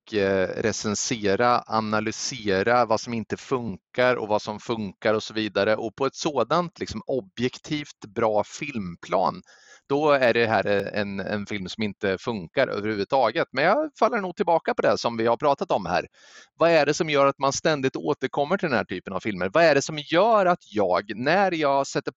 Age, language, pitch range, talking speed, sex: 30-49, Swedish, 110-150 Hz, 190 wpm, male